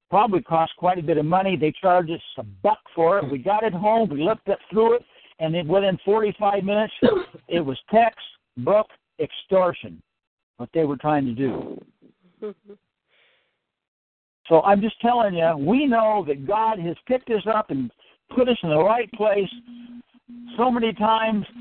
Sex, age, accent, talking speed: male, 60-79, American, 170 wpm